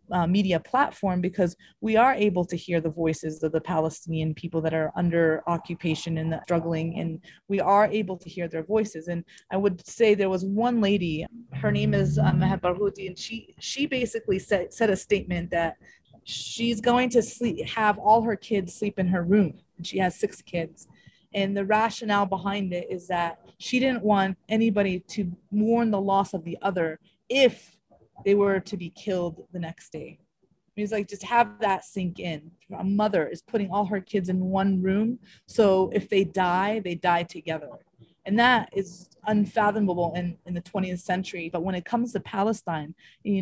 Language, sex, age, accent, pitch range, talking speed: English, female, 30-49, American, 170-210 Hz, 185 wpm